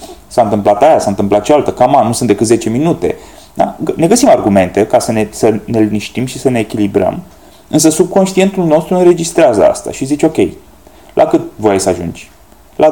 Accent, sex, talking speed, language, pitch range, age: native, male, 195 wpm, Romanian, 135-205 Hz, 30-49